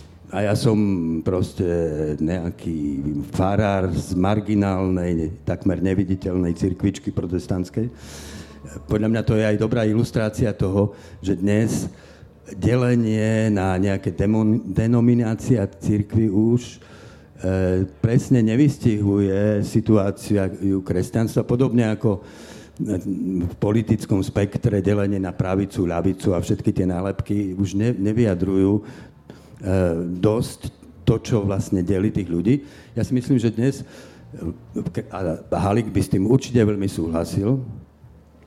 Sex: male